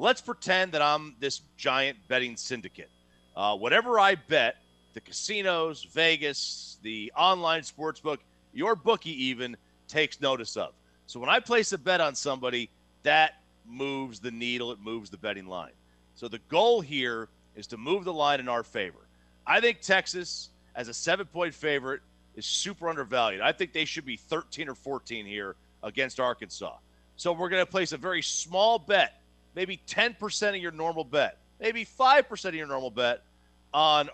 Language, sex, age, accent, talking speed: English, male, 40-59, American, 170 wpm